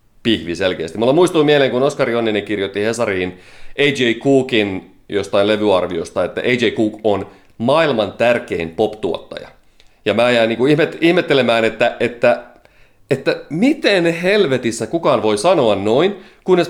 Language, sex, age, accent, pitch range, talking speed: Finnish, male, 30-49, native, 105-140 Hz, 120 wpm